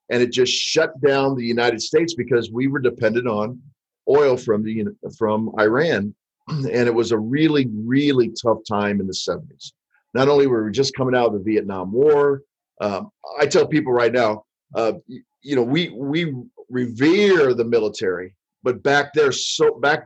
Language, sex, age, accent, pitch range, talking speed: English, male, 50-69, American, 115-155 Hz, 175 wpm